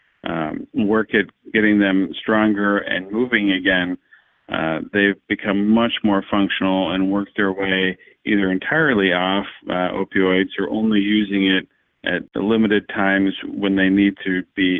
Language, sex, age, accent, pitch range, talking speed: English, male, 40-59, American, 95-105 Hz, 150 wpm